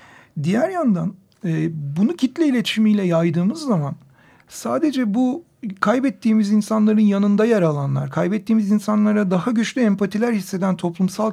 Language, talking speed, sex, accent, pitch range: Turkish, 110 wpm, male, native, 170-215 Hz